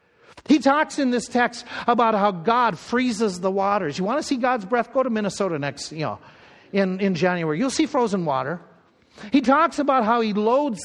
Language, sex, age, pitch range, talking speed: English, male, 50-69, 195-255 Hz, 200 wpm